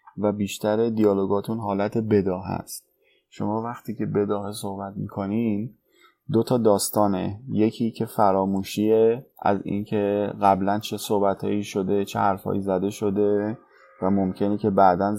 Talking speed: 125 wpm